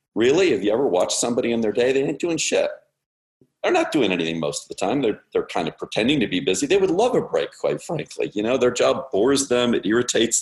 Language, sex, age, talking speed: English, male, 50-69, 255 wpm